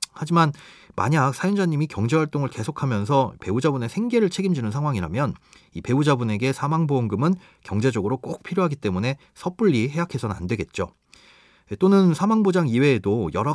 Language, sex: Korean, male